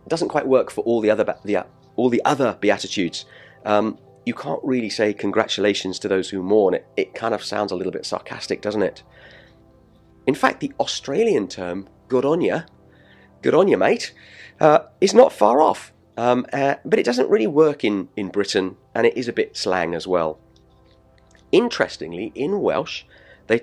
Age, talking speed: 30-49, 185 wpm